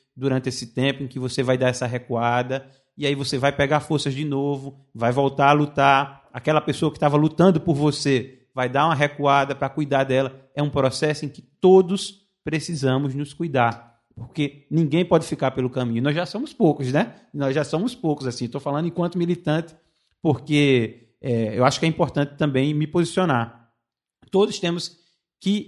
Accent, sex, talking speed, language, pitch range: Brazilian, male, 180 wpm, Portuguese, 125-165 Hz